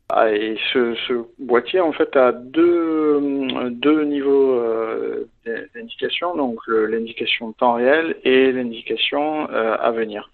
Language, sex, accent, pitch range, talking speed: French, male, French, 110-140 Hz, 140 wpm